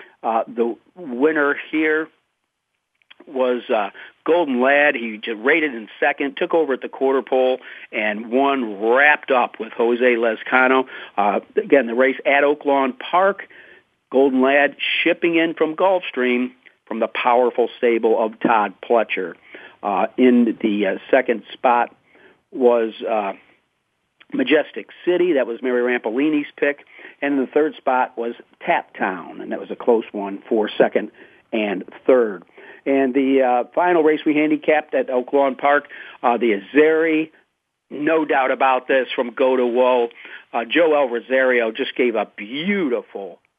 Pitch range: 125-155 Hz